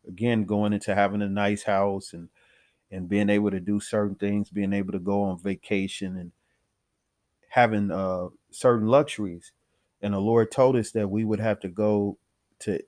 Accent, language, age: American, English, 30-49